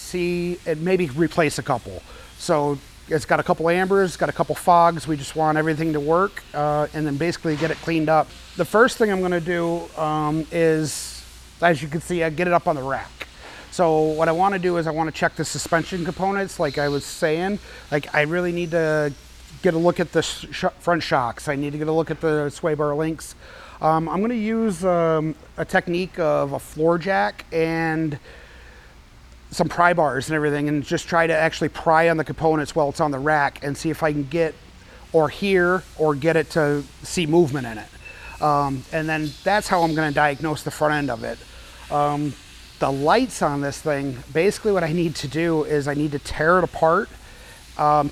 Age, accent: 30-49, American